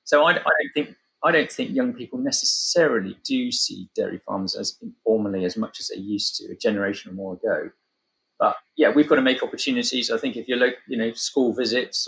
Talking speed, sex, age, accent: 220 wpm, male, 30-49, British